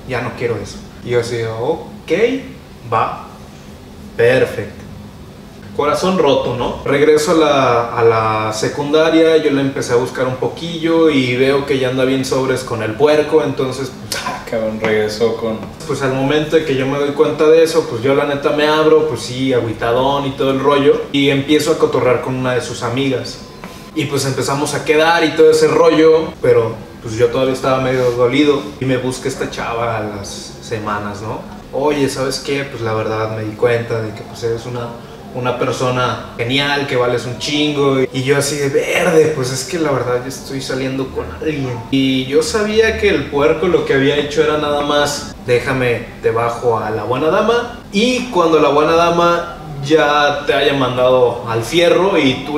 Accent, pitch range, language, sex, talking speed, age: Mexican, 125-155 Hz, Spanish, male, 190 wpm, 20-39